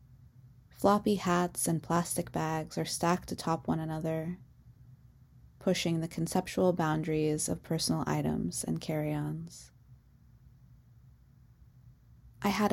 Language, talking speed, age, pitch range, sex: English, 100 wpm, 20-39, 125-180 Hz, female